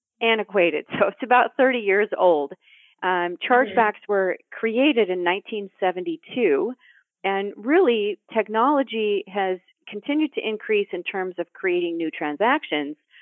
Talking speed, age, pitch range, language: 120 wpm, 40-59, 185-250 Hz, English